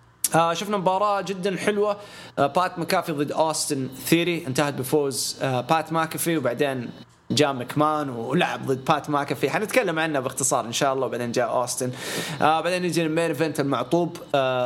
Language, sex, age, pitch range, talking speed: English, male, 20-39, 130-155 Hz, 130 wpm